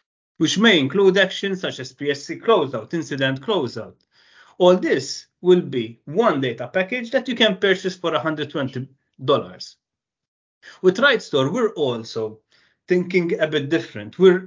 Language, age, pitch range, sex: English, 40-59, 130-190 Hz, male